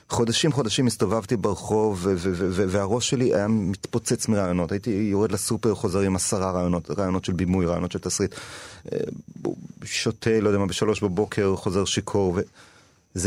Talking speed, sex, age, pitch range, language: 150 wpm, male, 30-49, 90-115 Hz, Hebrew